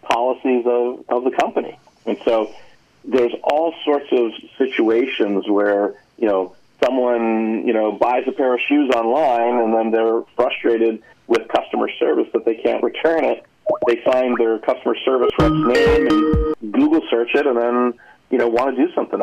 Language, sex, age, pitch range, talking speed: English, male, 40-59, 105-125 Hz, 170 wpm